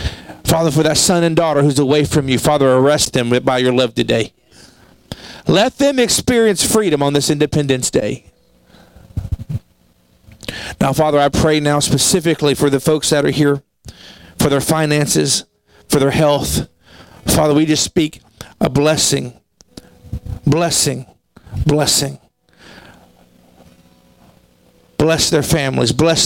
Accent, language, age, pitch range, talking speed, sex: American, English, 40-59, 125-170 Hz, 125 wpm, male